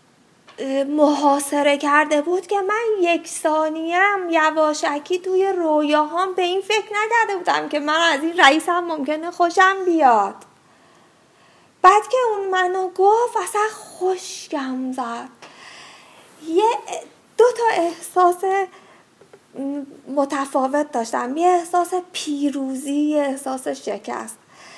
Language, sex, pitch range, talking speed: Persian, female, 280-360 Hz, 105 wpm